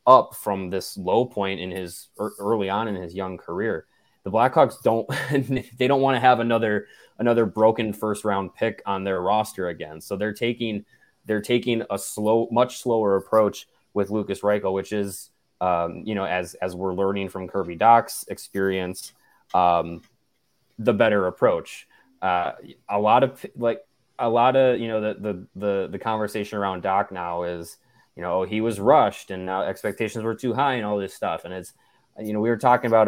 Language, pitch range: English, 100-120 Hz